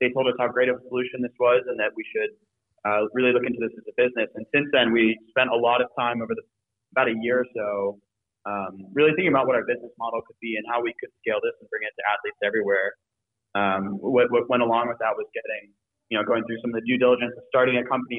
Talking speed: 270 wpm